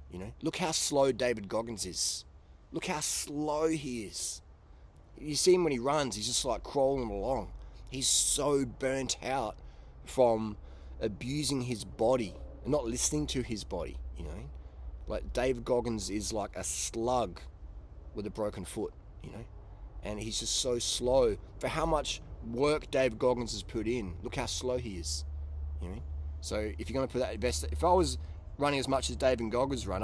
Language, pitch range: English, 75-125 Hz